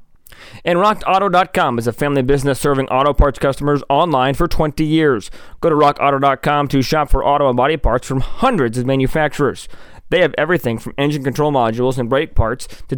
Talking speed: 180 wpm